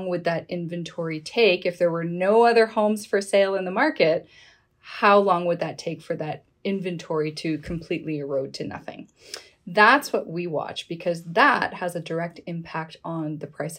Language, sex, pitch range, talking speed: English, female, 170-210 Hz, 180 wpm